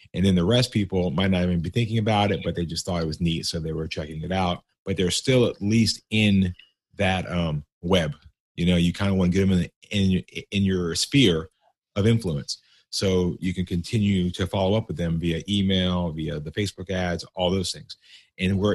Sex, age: male, 30-49